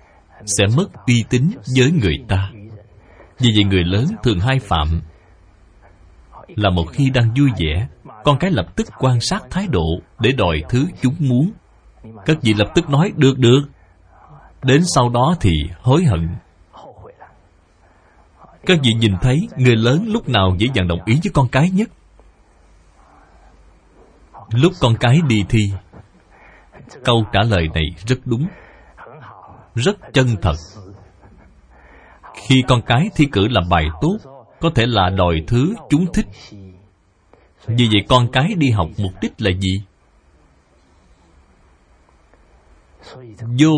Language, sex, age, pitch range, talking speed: Vietnamese, male, 20-39, 85-130 Hz, 140 wpm